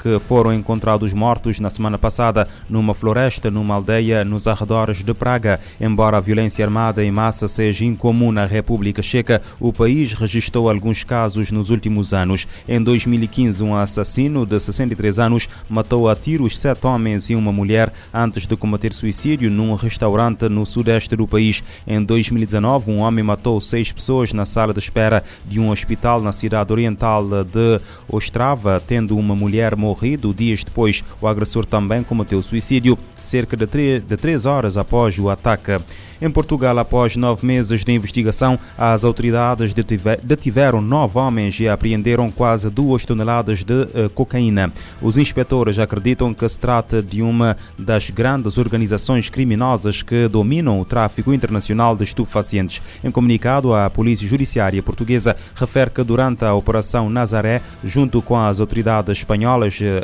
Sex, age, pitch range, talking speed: male, 20-39, 105-120 Hz, 150 wpm